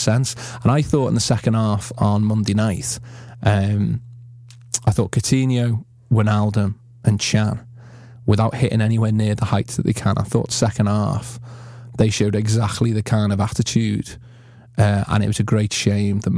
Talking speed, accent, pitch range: 170 wpm, British, 105-120 Hz